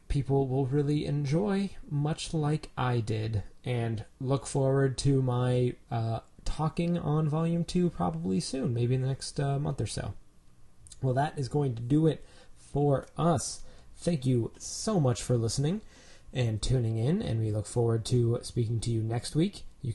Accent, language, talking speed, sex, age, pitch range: American, English, 170 wpm, male, 20-39, 115-150 Hz